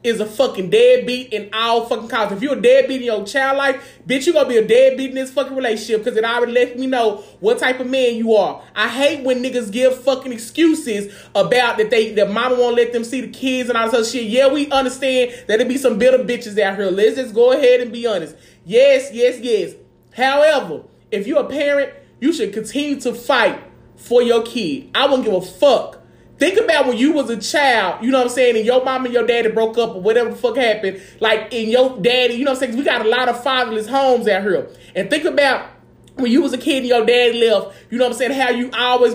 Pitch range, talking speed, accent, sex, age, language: 235-285 Hz, 250 wpm, American, male, 20-39, English